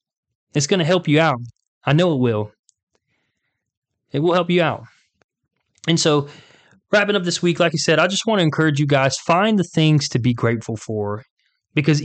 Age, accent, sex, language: 20-39, American, male, English